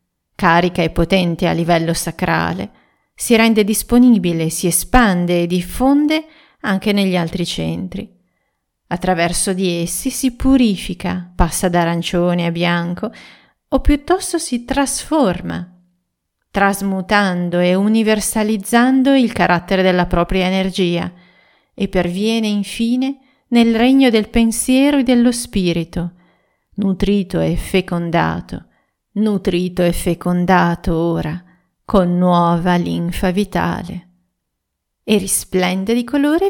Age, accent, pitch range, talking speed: 40-59, native, 175-220 Hz, 105 wpm